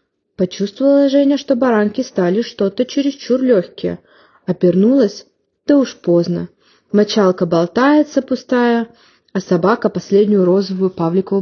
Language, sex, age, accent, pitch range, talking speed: Ukrainian, female, 20-39, native, 180-260 Hz, 105 wpm